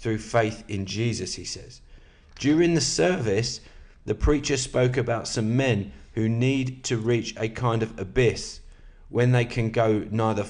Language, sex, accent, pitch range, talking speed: English, male, British, 95-125 Hz, 160 wpm